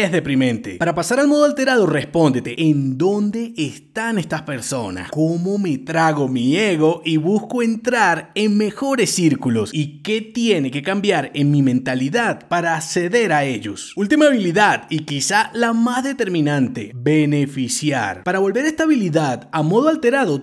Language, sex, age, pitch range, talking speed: Spanish, male, 30-49, 145-230 Hz, 150 wpm